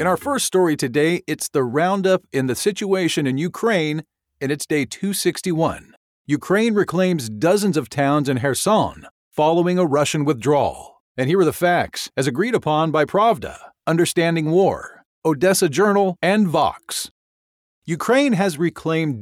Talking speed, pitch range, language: 145 wpm, 150-190 Hz, English